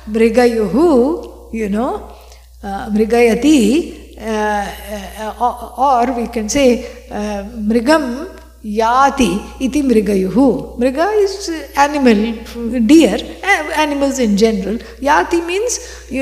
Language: English